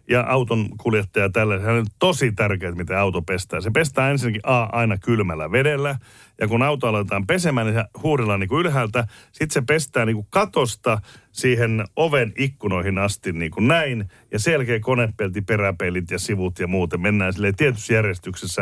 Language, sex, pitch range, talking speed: Finnish, male, 95-125 Hz, 170 wpm